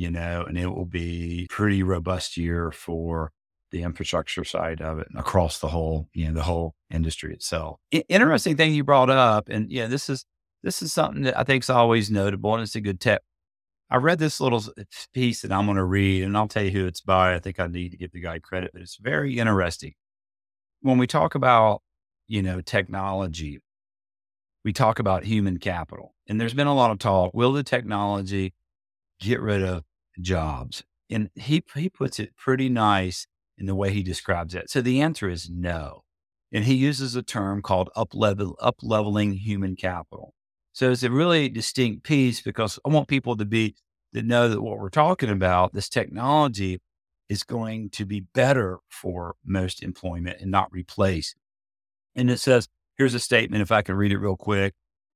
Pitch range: 90-115 Hz